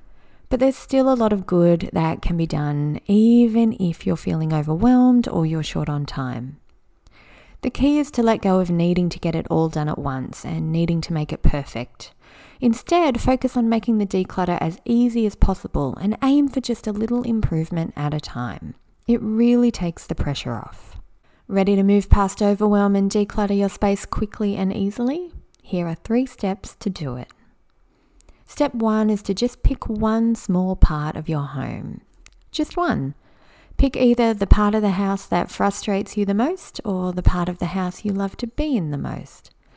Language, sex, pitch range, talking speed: English, female, 165-230 Hz, 190 wpm